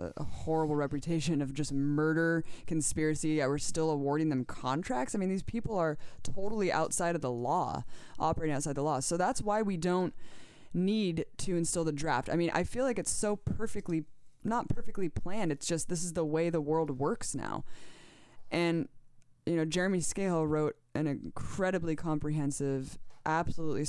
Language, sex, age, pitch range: English, female, 20-39, 135-165 Hz